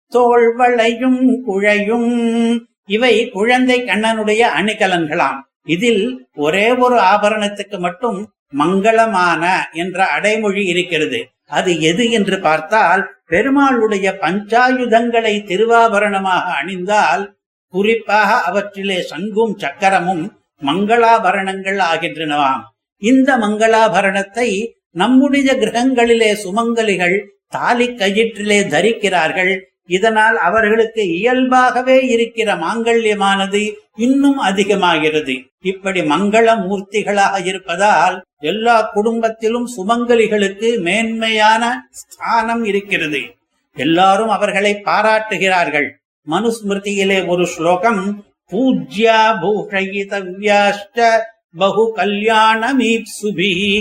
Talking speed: 70 wpm